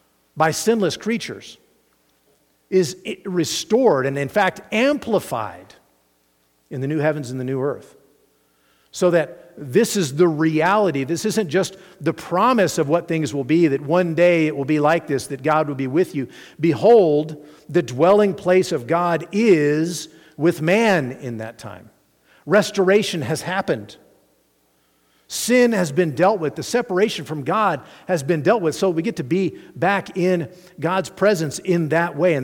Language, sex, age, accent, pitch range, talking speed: English, male, 50-69, American, 140-190 Hz, 165 wpm